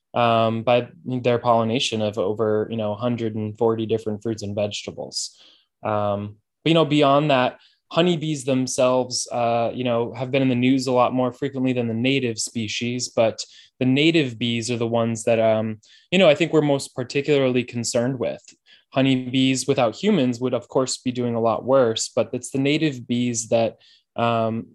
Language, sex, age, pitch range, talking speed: English, male, 20-39, 115-135 Hz, 175 wpm